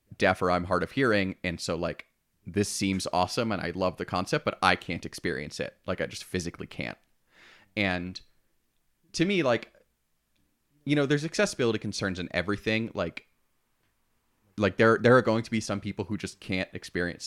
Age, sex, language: 30-49, male, English